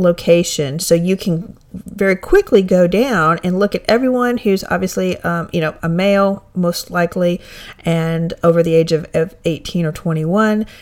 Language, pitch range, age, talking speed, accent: English, 165-200 Hz, 40-59, 165 wpm, American